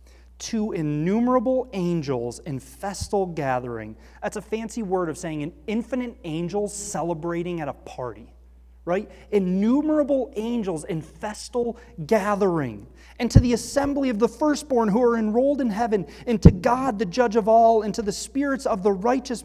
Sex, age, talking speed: male, 30-49, 155 wpm